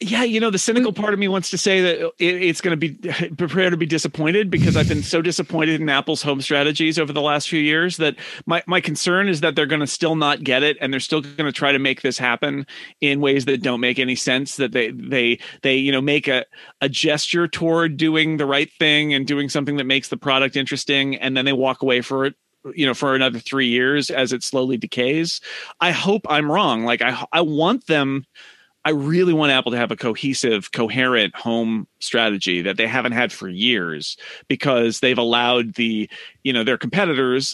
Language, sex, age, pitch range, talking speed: English, male, 30-49, 125-160 Hz, 220 wpm